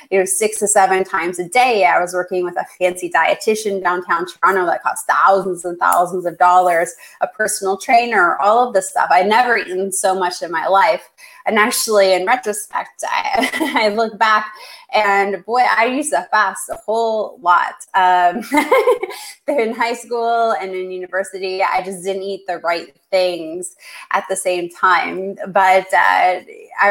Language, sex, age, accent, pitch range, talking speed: English, female, 20-39, American, 180-215 Hz, 170 wpm